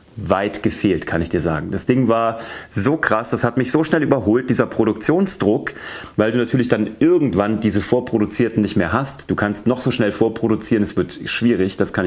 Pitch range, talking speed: 100-125 Hz, 200 wpm